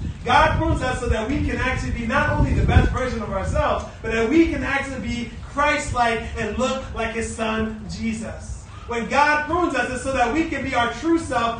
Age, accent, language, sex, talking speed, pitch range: 30-49, American, English, male, 215 wpm, 230-290 Hz